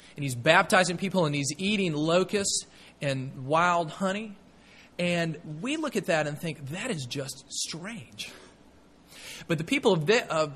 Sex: male